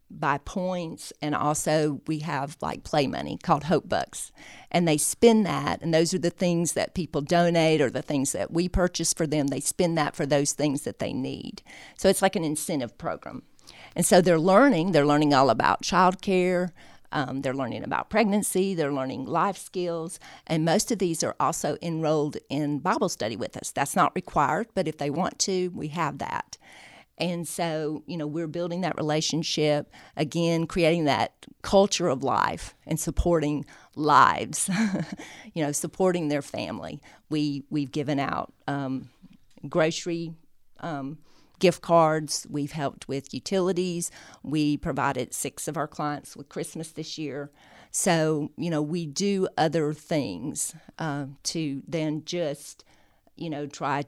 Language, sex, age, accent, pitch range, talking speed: English, female, 50-69, American, 145-175 Hz, 165 wpm